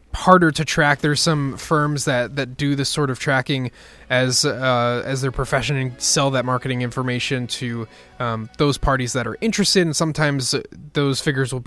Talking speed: 180 wpm